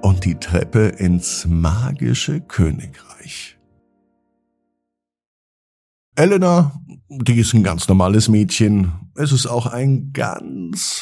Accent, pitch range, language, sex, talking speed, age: German, 85-120 Hz, German, male, 100 wpm, 50-69